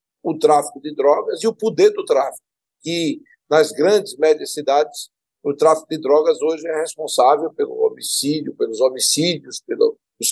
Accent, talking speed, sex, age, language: Brazilian, 155 wpm, male, 60-79, Portuguese